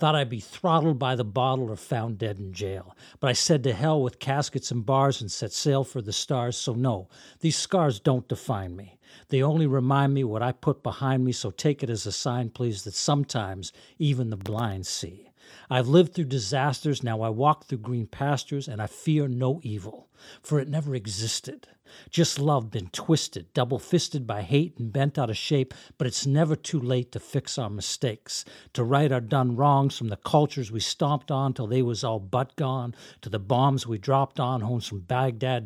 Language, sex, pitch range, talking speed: English, male, 115-140 Hz, 205 wpm